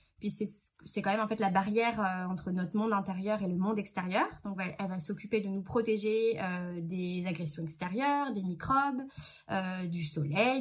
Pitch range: 190-240 Hz